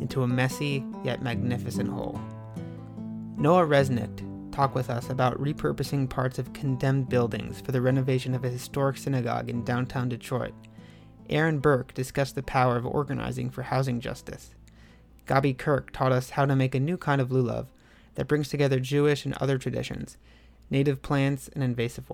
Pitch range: 120-140 Hz